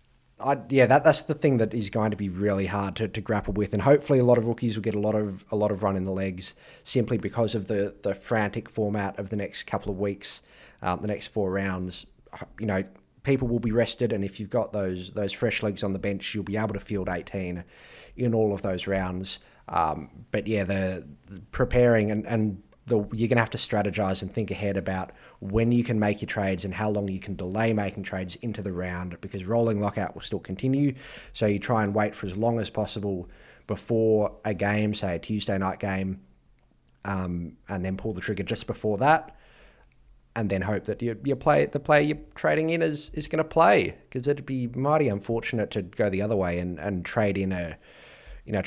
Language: English